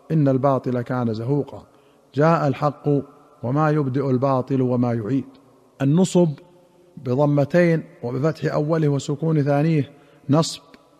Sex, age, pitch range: male, 50-69, 135-155 Hz